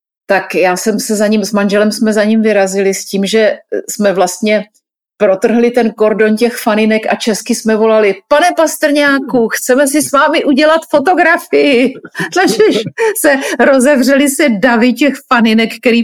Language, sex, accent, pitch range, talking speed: Czech, female, native, 200-250 Hz, 155 wpm